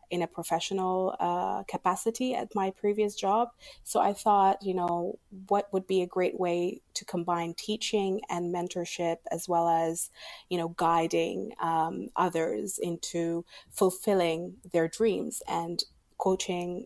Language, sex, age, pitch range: English, female, 30-49, 170-190 Hz